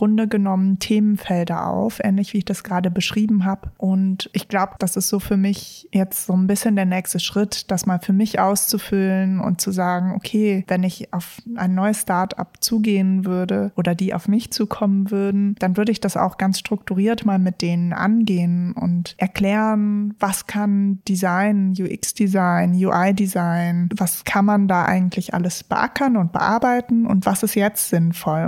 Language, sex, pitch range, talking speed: German, female, 185-205 Hz, 170 wpm